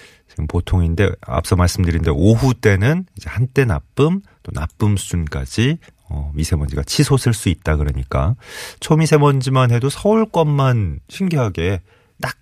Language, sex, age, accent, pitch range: Korean, male, 30-49, native, 85-130 Hz